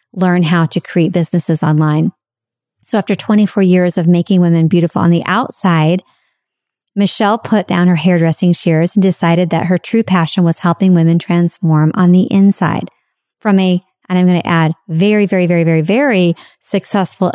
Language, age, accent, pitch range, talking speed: English, 40-59, American, 165-185 Hz, 165 wpm